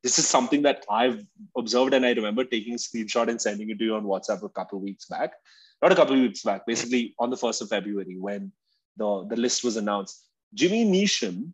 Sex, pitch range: male, 105-130 Hz